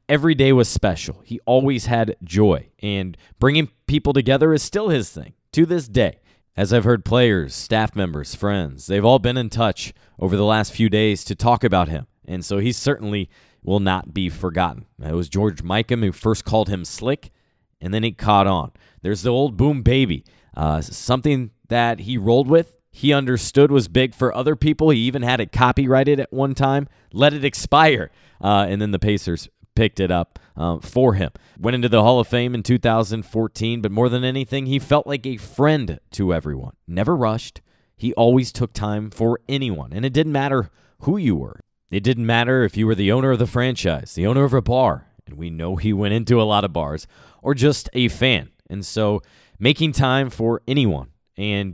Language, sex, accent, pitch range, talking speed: English, male, American, 100-130 Hz, 200 wpm